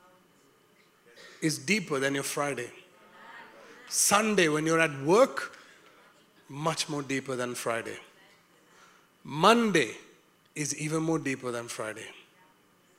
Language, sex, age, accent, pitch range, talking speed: English, male, 30-49, Indian, 160-225 Hz, 100 wpm